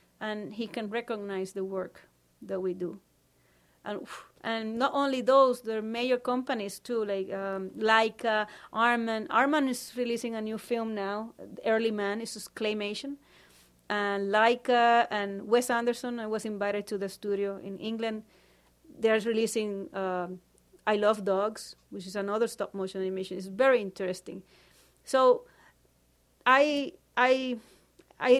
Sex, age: female, 30-49